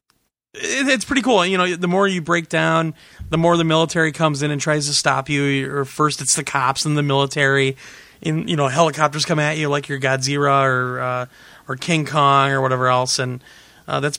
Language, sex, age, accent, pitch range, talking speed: English, male, 30-49, American, 130-165 Hz, 205 wpm